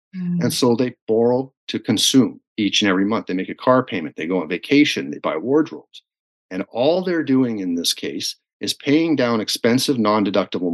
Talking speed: 190 wpm